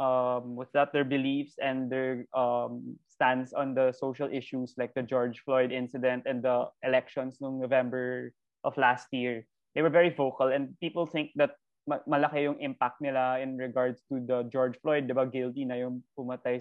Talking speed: 180 wpm